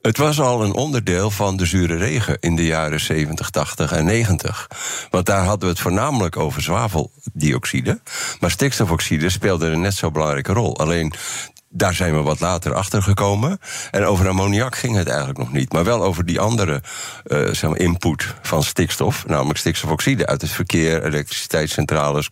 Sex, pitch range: male, 80-105 Hz